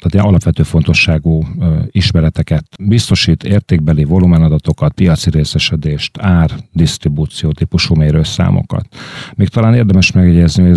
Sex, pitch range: male, 80-95 Hz